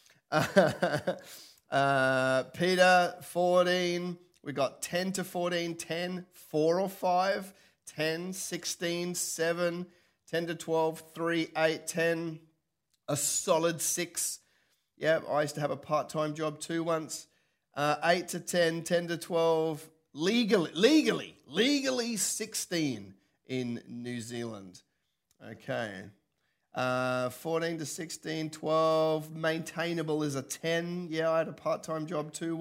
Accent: Australian